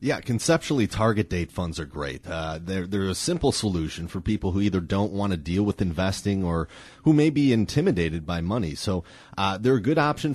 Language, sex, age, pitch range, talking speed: English, male, 30-49, 85-115 Hz, 210 wpm